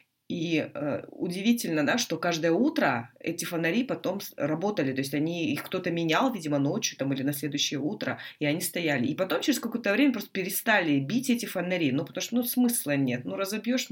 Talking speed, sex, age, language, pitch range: 195 wpm, female, 20-39, Russian, 140-185 Hz